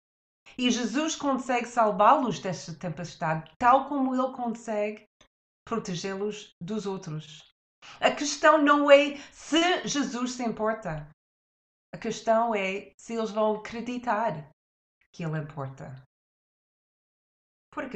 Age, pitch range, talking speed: 30-49, 180-250 Hz, 105 wpm